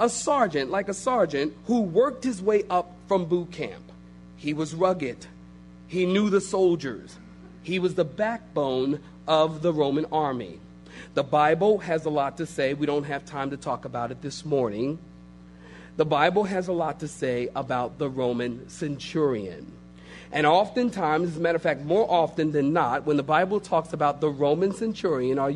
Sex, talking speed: male, 180 wpm